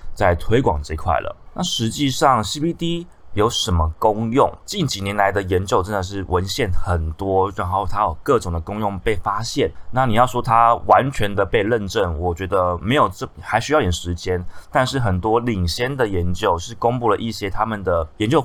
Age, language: 20-39, Chinese